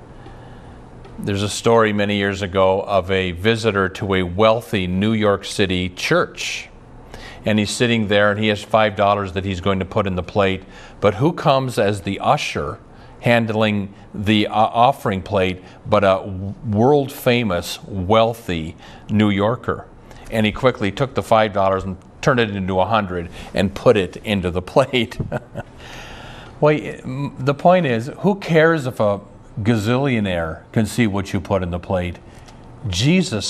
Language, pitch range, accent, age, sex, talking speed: English, 100-125 Hz, American, 40-59, male, 150 wpm